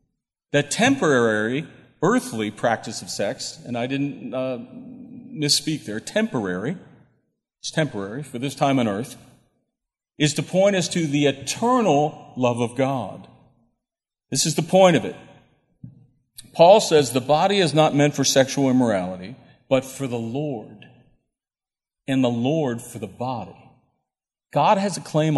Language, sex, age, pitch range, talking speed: English, male, 40-59, 125-170 Hz, 140 wpm